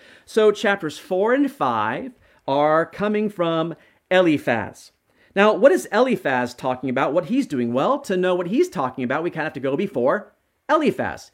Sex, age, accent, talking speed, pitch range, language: male, 40-59, American, 175 wpm, 150-220 Hz, English